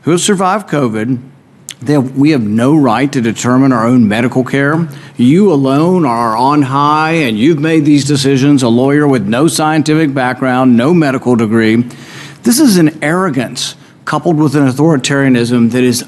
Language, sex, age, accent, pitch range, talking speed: English, male, 50-69, American, 125-160 Hz, 155 wpm